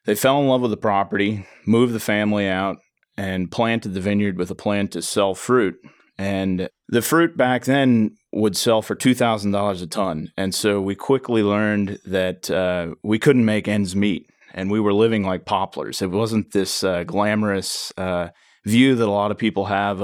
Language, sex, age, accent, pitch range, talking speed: English, male, 30-49, American, 95-110 Hz, 190 wpm